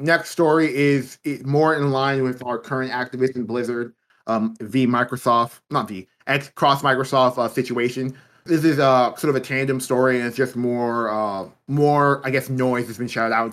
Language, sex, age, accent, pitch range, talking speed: English, male, 20-39, American, 125-150 Hz, 190 wpm